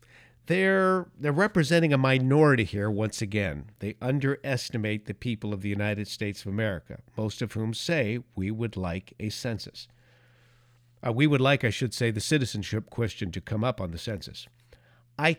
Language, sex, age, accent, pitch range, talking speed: English, male, 50-69, American, 110-130 Hz, 170 wpm